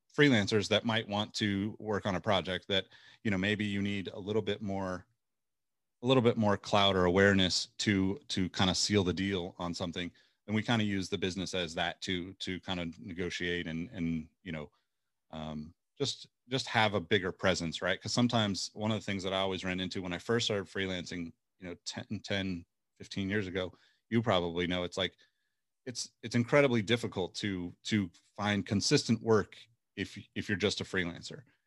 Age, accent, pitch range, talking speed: 30-49, American, 90-110 Hz, 195 wpm